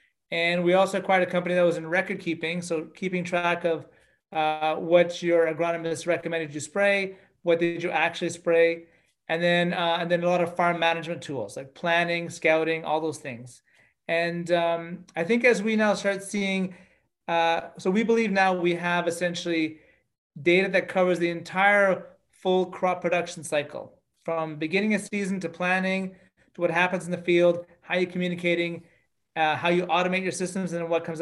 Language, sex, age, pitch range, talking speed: English, male, 30-49, 165-185 Hz, 180 wpm